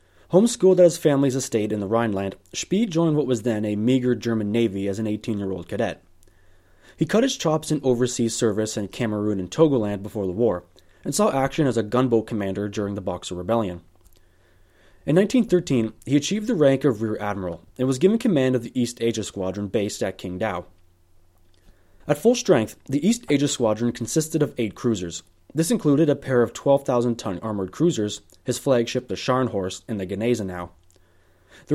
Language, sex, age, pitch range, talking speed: English, male, 20-39, 95-135 Hz, 180 wpm